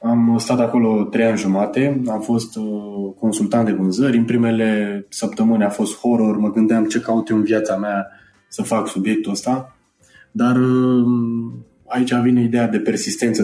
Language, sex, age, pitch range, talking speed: Romanian, male, 20-39, 100-125 Hz, 155 wpm